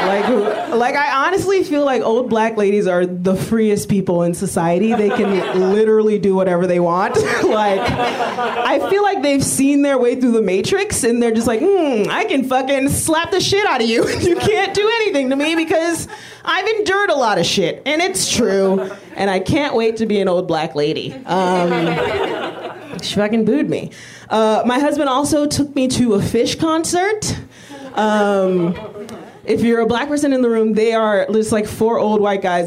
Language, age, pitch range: English, 30-49, 185-260 Hz